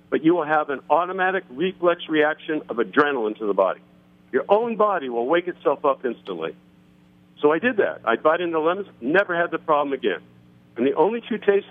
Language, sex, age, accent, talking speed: English, male, 50-69, American, 200 wpm